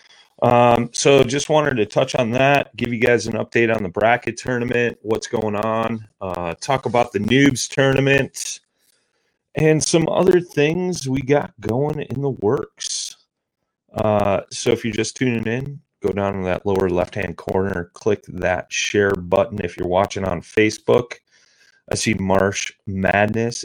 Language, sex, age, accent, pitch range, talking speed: English, male, 30-49, American, 105-135 Hz, 160 wpm